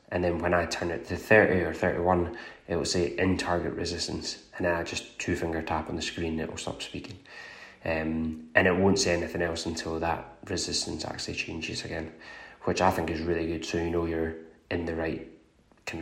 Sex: male